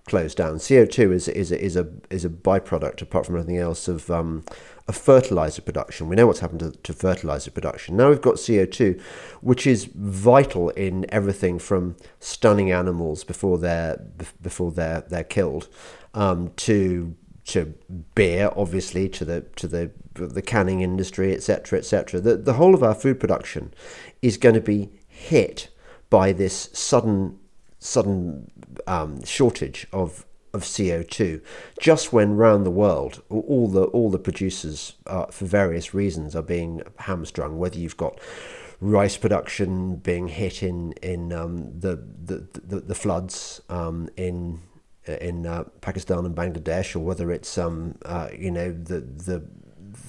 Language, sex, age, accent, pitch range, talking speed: English, male, 40-59, British, 85-100 Hz, 155 wpm